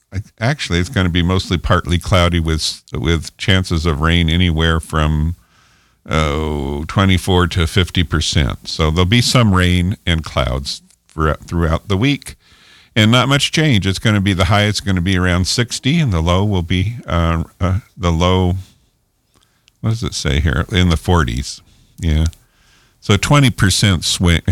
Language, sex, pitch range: English, male, 80-105 Hz